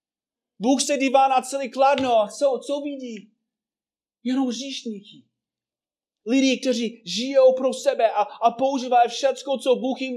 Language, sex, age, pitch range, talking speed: Czech, male, 30-49, 190-265 Hz, 140 wpm